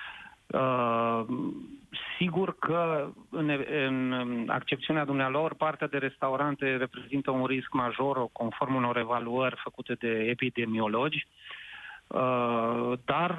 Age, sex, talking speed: 30-49, male, 90 wpm